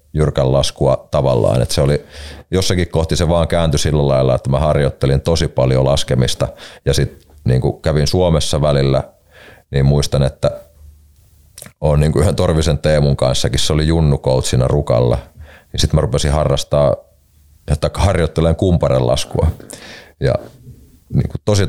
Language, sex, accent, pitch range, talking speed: Finnish, male, native, 70-85 Hz, 140 wpm